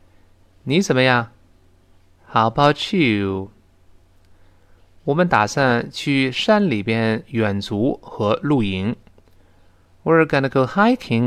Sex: male